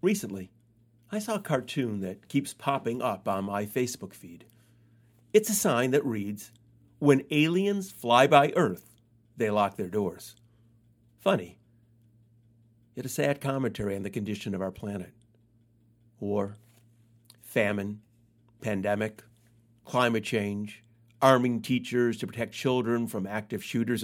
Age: 50-69